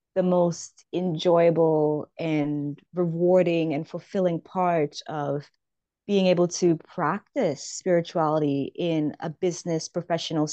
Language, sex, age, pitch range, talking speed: English, female, 20-39, 165-185 Hz, 105 wpm